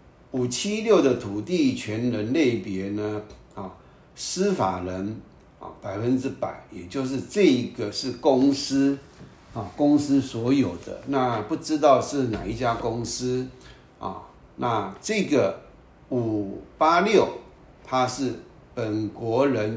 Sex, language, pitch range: male, Chinese, 105-130 Hz